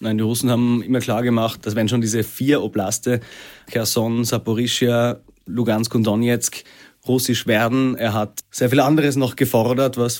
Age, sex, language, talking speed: 30-49, male, German, 165 wpm